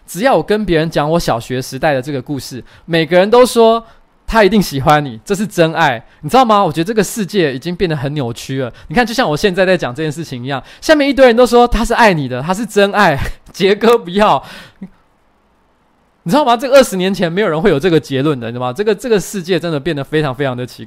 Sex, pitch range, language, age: male, 135-195 Hz, Chinese, 20-39